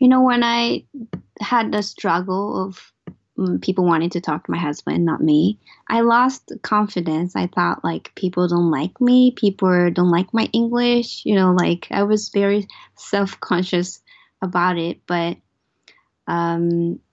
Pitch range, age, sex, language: 170-205 Hz, 20-39, female, Japanese